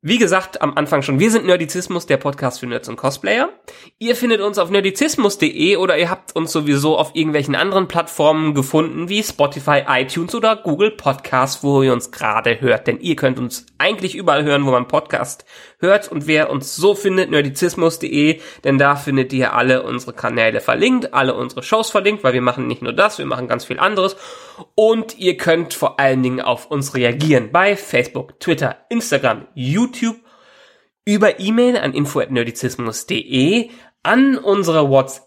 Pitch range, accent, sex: 135-200 Hz, German, male